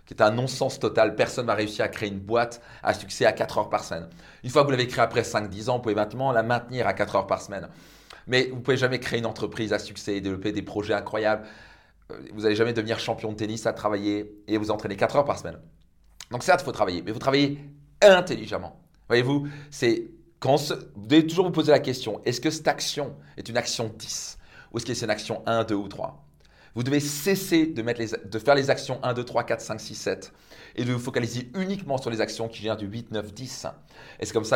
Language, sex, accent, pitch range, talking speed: French, male, French, 105-140 Hz, 245 wpm